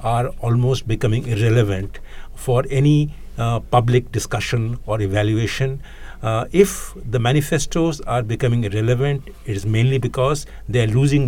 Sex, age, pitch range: male, 60-79, 120-150 Hz